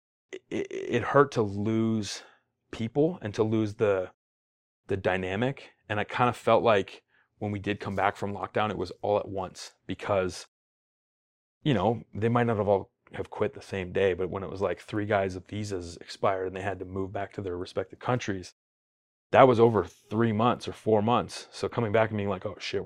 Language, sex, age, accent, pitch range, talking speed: English, male, 30-49, American, 95-110 Hz, 205 wpm